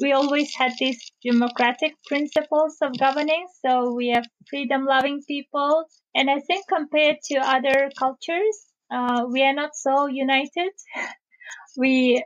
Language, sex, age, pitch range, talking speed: English, female, 20-39, 230-275 Hz, 130 wpm